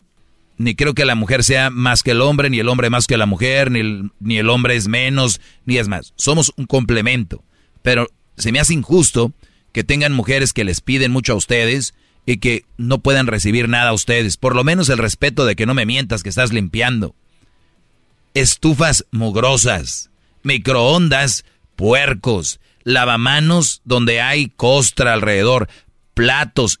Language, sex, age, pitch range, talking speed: Spanish, male, 40-59, 115-140 Hz, 170 wpm